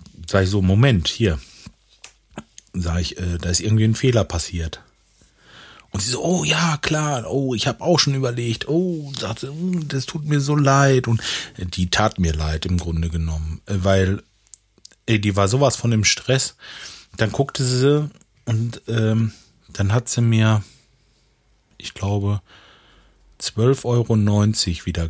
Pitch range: 95-135 Hz